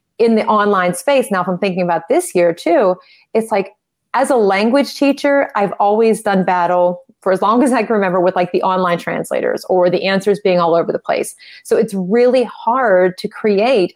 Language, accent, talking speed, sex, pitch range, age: English, American, 205 wpm, female, 185-230 Hz, 30-49